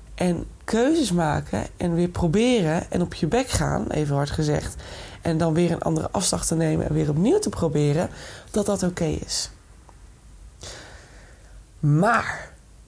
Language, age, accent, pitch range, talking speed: Dutch, 20-39, Dutch, 150-200 Hz, 150 wpm